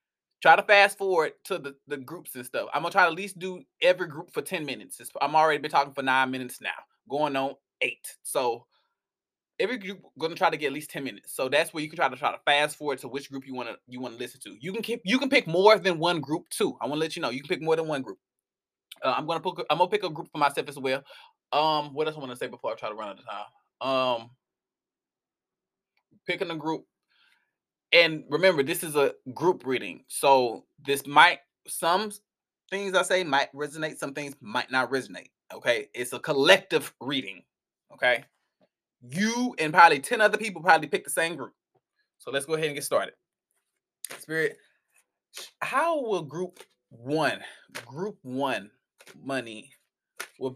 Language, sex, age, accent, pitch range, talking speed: English, male, 20-39, American, 135-185 Hz, 205 wpm